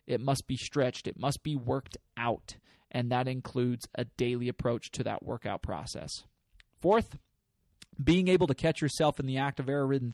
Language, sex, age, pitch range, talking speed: English, male, 20-39, 125-145 Hz, 180 wpm